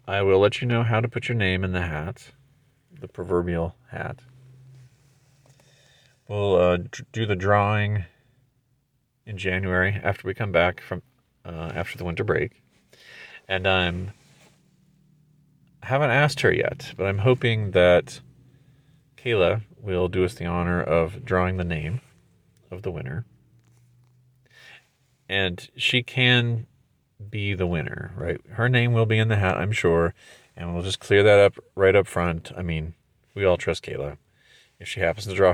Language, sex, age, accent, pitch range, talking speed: English, male, 30-49, American, 90-125 Hz, 160 wpm